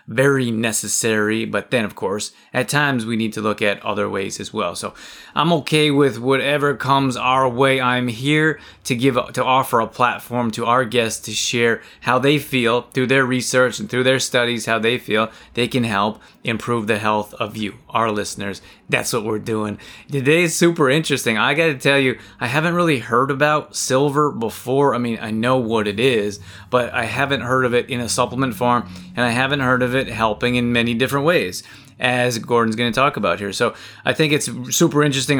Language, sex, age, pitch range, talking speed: English, male, 20-39, 115-135 Hz, 205 wpm